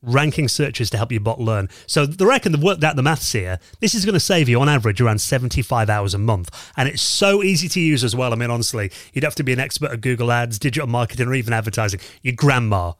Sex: male